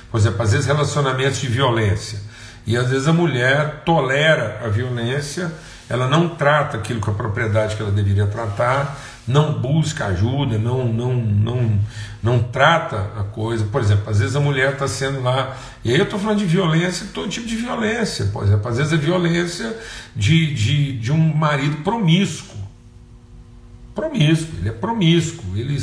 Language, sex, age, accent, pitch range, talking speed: Portuguese, male, 50-69, Brazilian, 115-155 Hz, 165 wpm